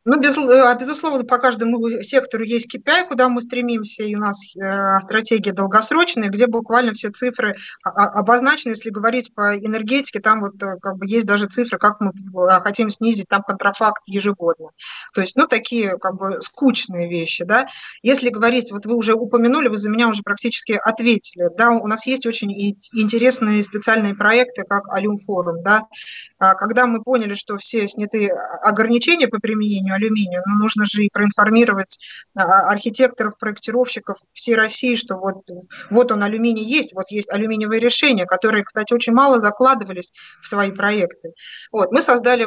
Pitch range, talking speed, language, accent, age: 200-240 Hz, 160 wpm, Russian, native, 20-39